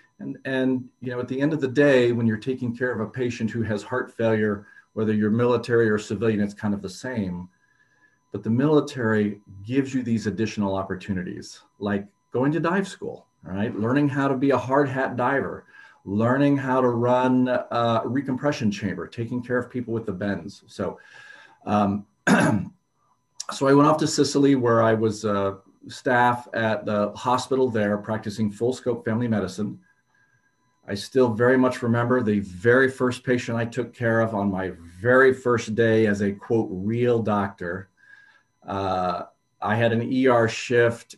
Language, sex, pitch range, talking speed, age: English, male, 105-130 Hz, 175 wpm, 40-59